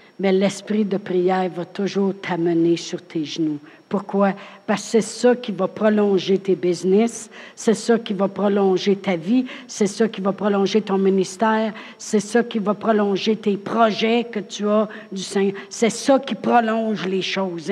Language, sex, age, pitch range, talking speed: French, female, 60-79, 200-260 Hz, 175 wpm